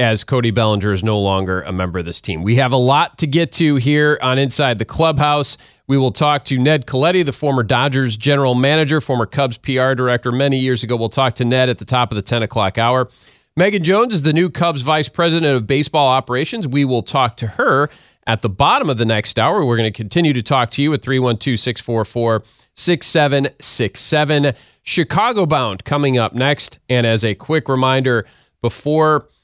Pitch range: 115-150 Hz